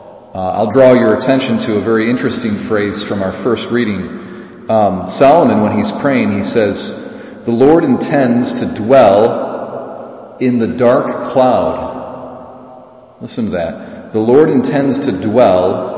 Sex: male